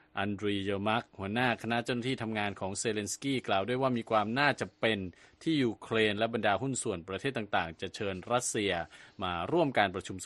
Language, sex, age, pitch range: Thai, male, 20-39, 100-130 Hz